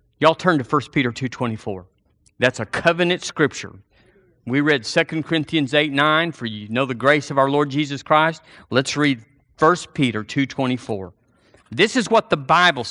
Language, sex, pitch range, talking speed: English, male, 120-180 Hz, 165 wpm